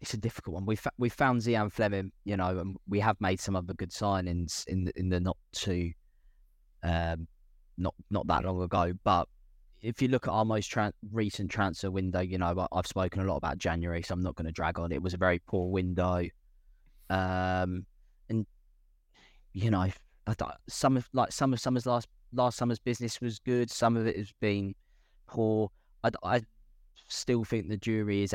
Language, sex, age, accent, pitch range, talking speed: English, male, 10-29, British, 90-105 Hz, 200 wpm